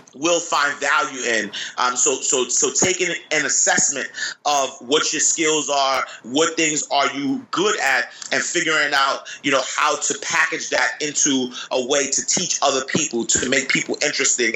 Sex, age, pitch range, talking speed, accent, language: male, 30-49, 135-165 Hz, 175 wpm, American, English